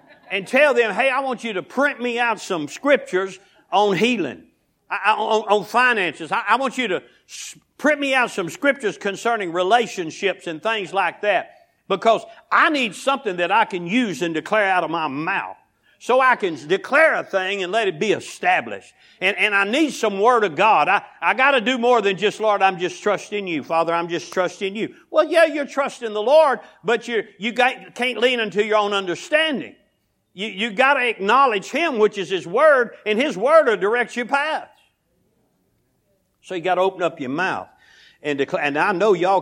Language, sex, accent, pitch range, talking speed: English, male, American, 180-250 Hz, 195 wpm